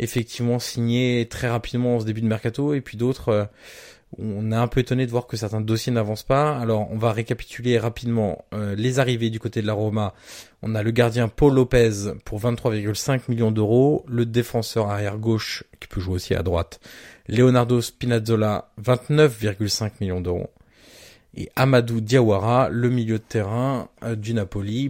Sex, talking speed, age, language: male, 165 wpm, 20-39, French